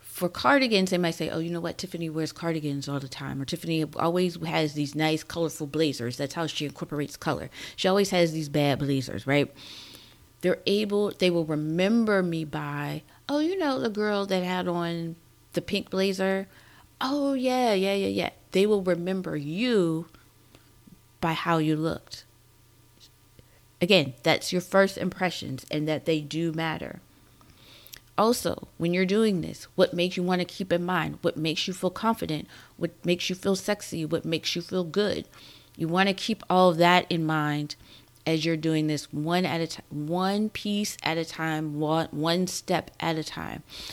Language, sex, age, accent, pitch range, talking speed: English, female, 30-49, American, 150-185 Hz, 180 wpm